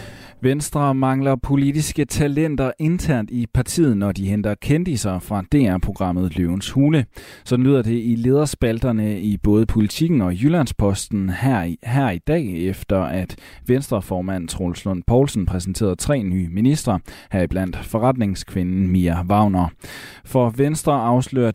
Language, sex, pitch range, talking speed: Danish, male, 95-125 Hz, 130 wpm